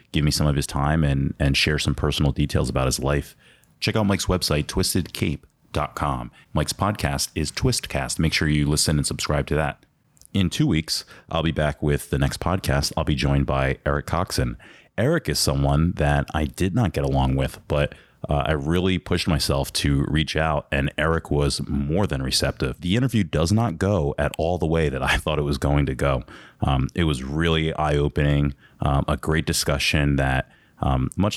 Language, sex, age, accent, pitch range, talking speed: English, male, 30-49, American, 70-95 Hz, 195 wpm